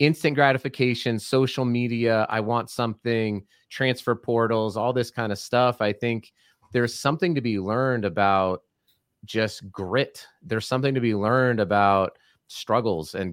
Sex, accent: male, American